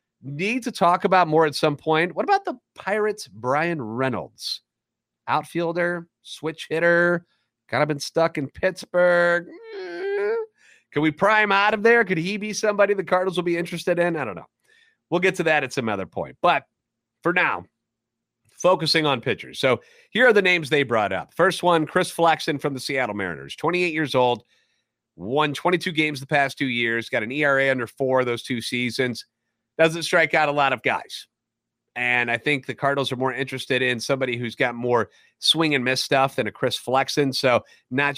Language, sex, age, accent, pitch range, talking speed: English, male, 30-49, American, 130-175 Hz, 190 wpm